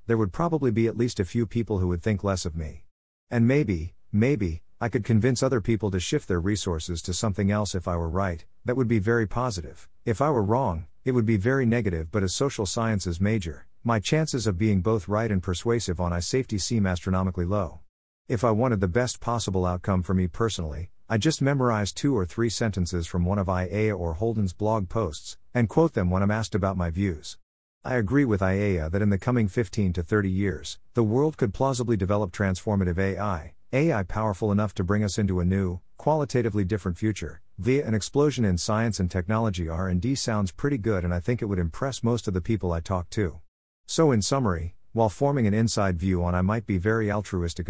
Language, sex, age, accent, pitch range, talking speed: English, male, 50-69, American, 90-115 Hz, 215 wpm